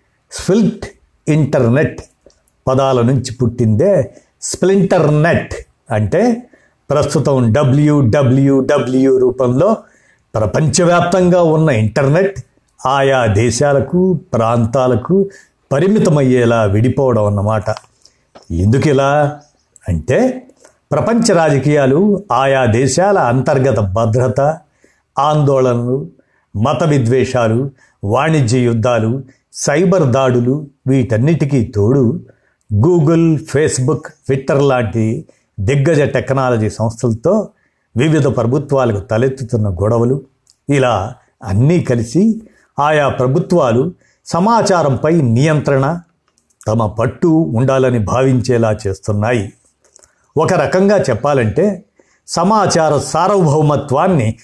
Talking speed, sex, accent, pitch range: 70 wpm, male, native, 120-155 Hz